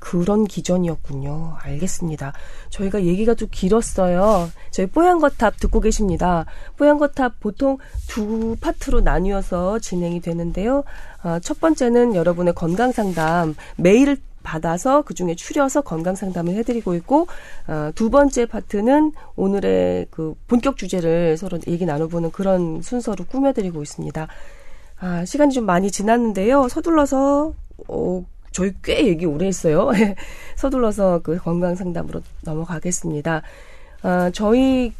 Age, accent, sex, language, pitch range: 30-49, native, female, Korean, 170-250 Hz